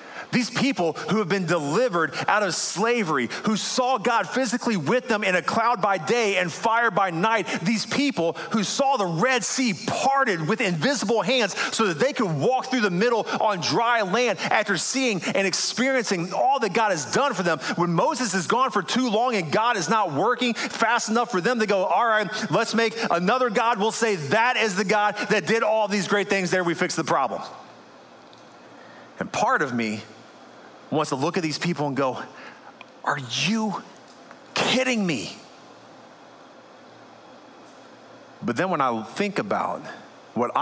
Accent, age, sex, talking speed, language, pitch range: American, 30-49, male, 180 wpm, English, 170-235 Hz